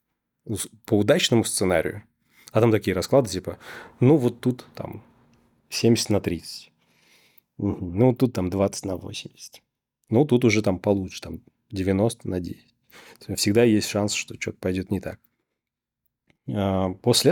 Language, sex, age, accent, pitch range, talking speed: Russian, male, 30-49, native, 95-115 Hz, 140 wpm